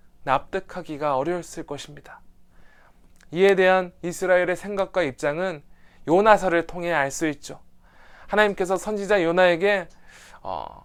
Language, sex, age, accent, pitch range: Korean, male, 20-39, native, 150-195 Hz